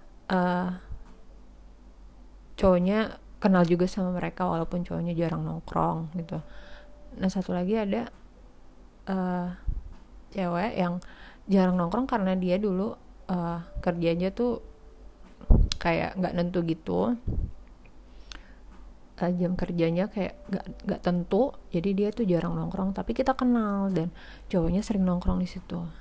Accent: native